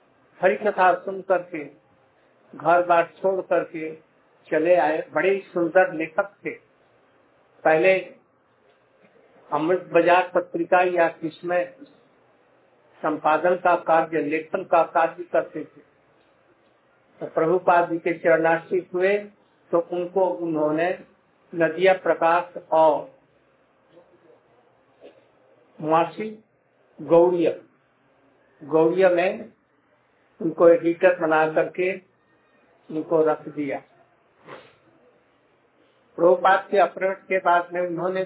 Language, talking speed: Hindi, 90 wpm